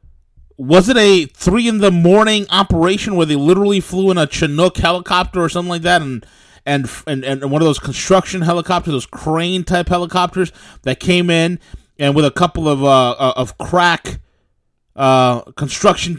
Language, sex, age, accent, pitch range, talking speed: English, male, 30-49, American, 150-195 Hz, 170 wpm